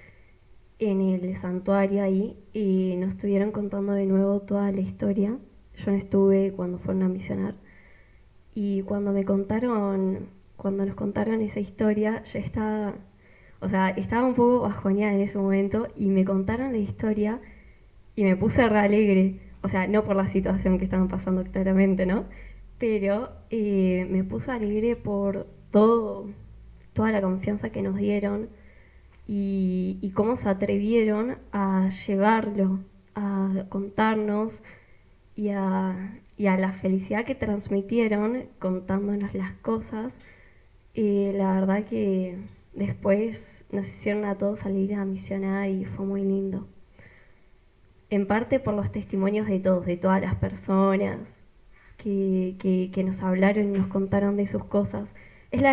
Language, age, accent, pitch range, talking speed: Spanish, 10-29, Argentinian, 190-210 Hz, 140 wpm